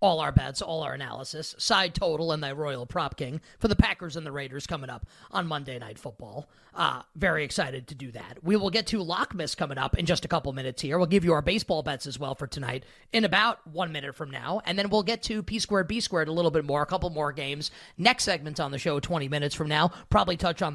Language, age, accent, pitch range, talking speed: English, 30-49, American, 150-185 Hz, 260 wpm